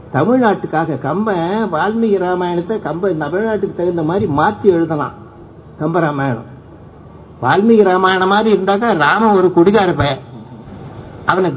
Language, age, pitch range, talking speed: Tamil, 60-79, 140-225 Hz, 105 wpm